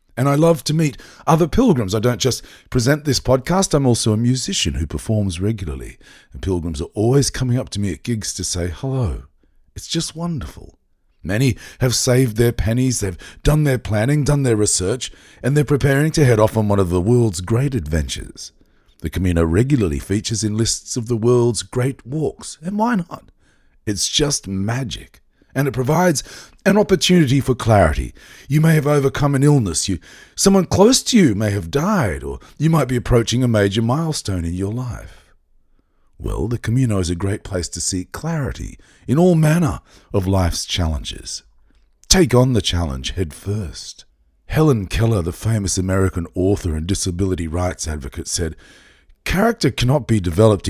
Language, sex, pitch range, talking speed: English, male, 95-140 Hz, 175 wpm